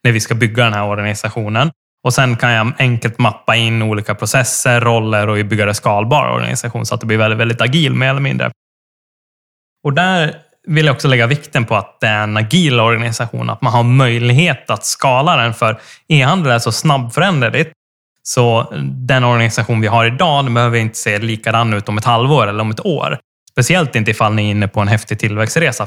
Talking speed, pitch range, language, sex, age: 200 wpm, 110-135 Hz, Swedish, male, 10-29